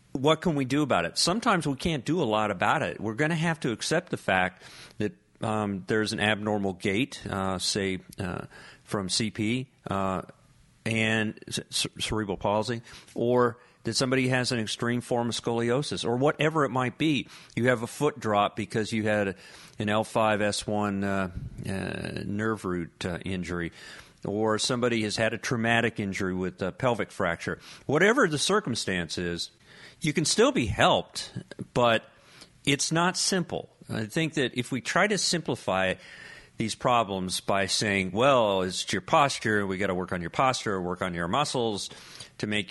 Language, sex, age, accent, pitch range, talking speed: English, male, 40-59, American, 100-140 Hz, 165 wpm